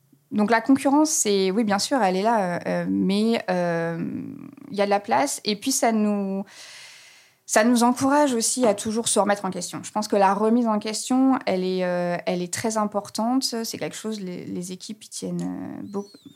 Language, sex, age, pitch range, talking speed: French, female, 20-39, 190-230 Hz, 205 wpm